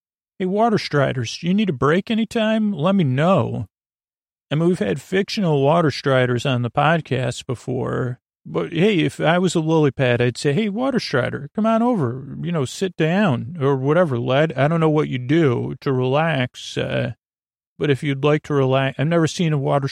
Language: English